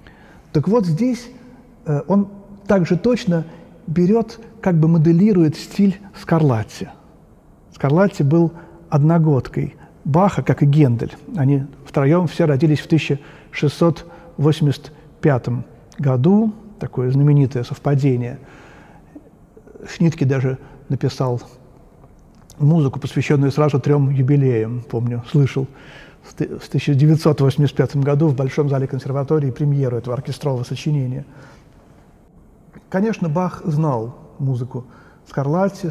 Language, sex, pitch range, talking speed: Russian, male, 135-180 Hz, 95 wpm